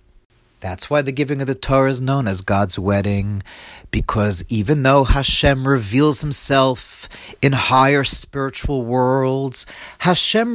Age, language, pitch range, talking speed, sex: 40-59, English, 115-150 Hz, 130 wpm, male